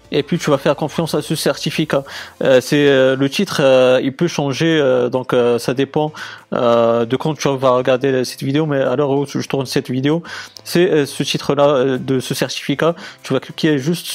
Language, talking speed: French, 220 wpm